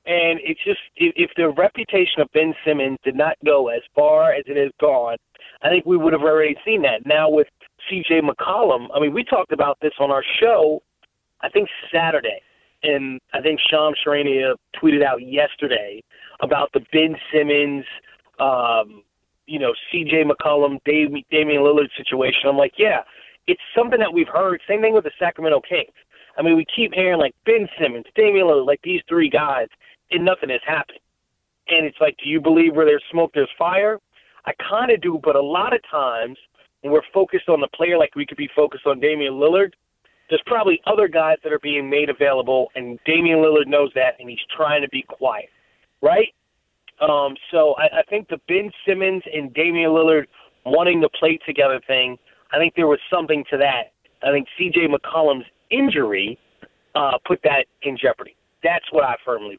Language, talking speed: English, 185 wpm